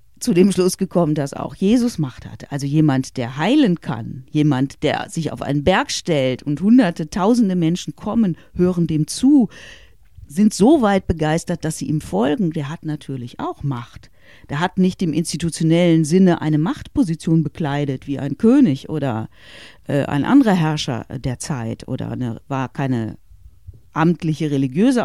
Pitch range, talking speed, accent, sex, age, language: 135-205 Hz, 160 wpm, German, female, 50-69, German